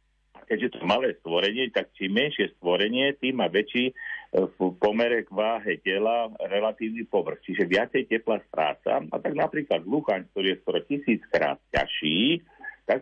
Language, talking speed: Slovak, 145 wpm